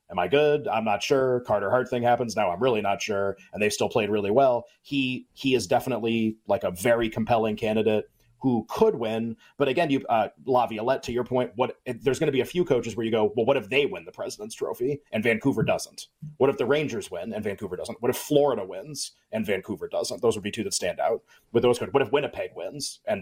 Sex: male